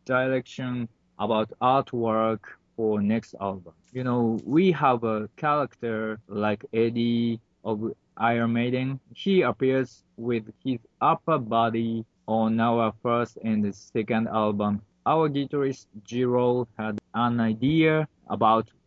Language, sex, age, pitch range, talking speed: English, male, 20-39, 110-130 Hz, 115 wpm